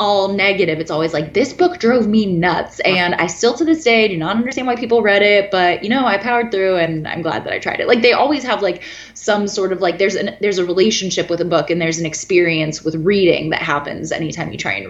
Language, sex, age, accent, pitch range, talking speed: English, female, 20-39, American, 155-195 Hz, 260 wpm